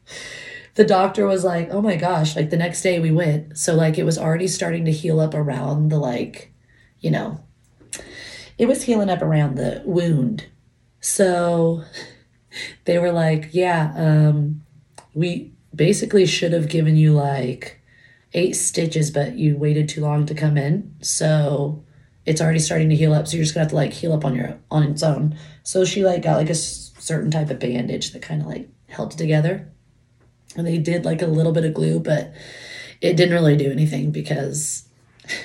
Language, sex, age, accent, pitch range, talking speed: English, female, 30-49, American, 150-185 Hz, 190 wpm